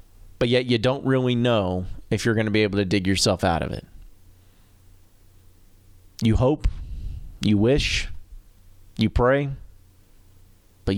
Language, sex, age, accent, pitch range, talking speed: English, male, 30-49, American, 90-125 Hz, 135 wpm